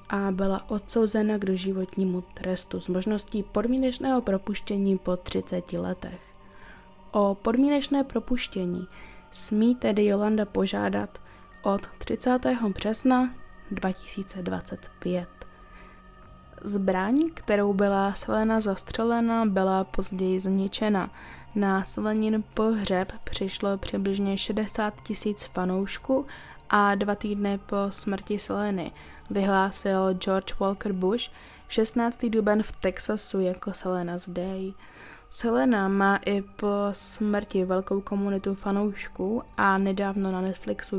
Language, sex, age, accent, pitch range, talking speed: Czech, female, 20-39, native, 190-220 Hz, 100 wpm